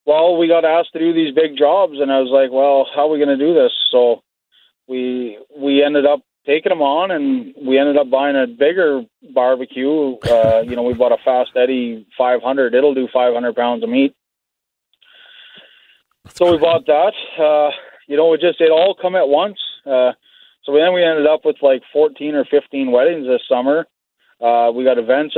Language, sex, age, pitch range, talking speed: English, male, 20-39, 125-170 Hz, 205 wpm